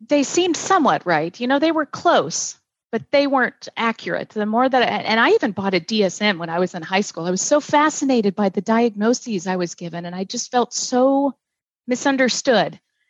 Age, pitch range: 40-59, 185-235 Hz